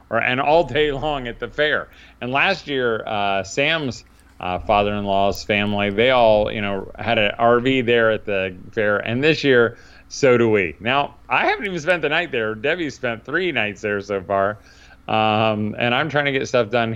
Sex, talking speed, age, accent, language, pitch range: male, 195 wpm, 30-49, American, English, 90-115 Hz